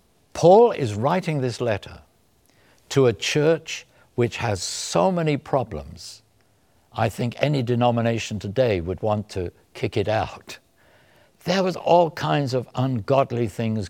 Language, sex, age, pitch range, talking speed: English, male, 60-79, 100-155 Hz, 135 wpm